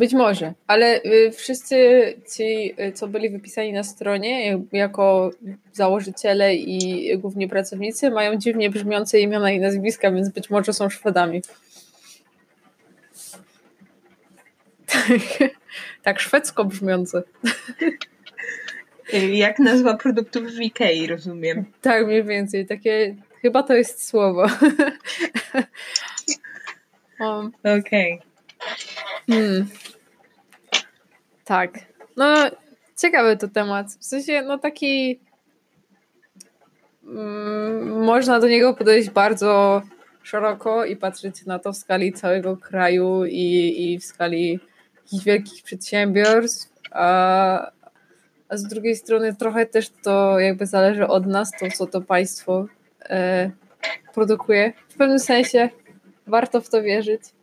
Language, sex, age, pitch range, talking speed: Polish, female, 20-39, 195-230 Hz, 100 wpm